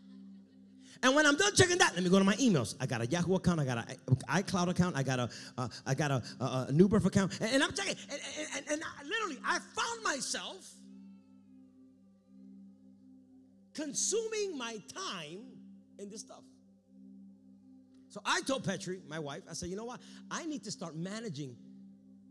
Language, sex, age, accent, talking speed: English, male, 30-49, American, 180 wpm